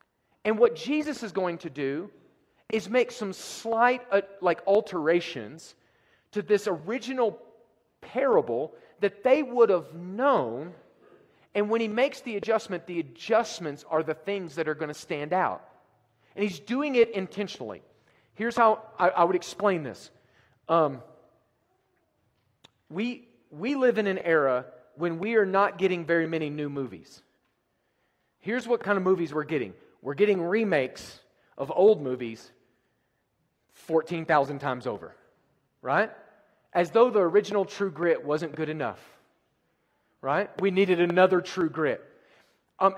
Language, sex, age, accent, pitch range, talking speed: English, male, 40-59, American, 155-215 Hz, 140 wpm